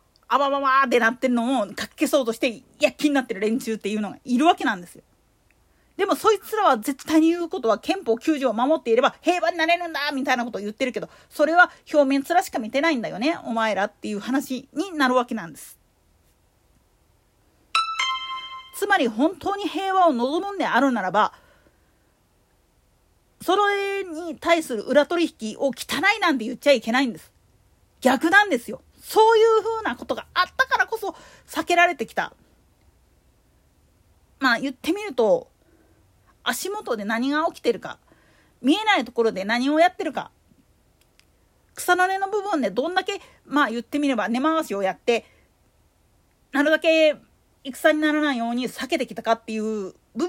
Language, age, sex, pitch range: Japanese, 40-59, female, 235-345 Hz